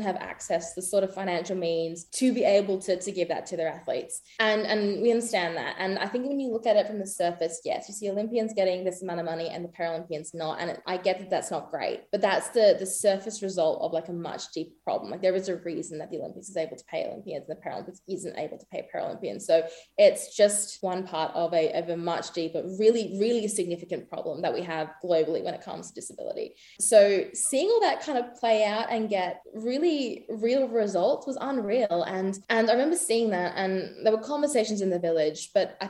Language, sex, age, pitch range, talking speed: English, female, 20-39, 175-230 Hz, 235 wpm